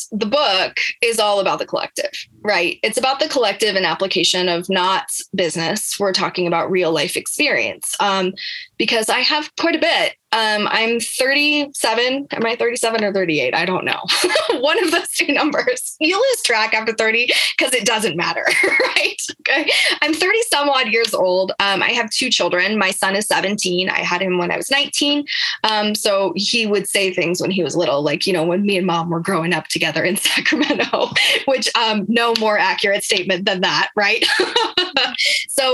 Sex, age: female, 20-39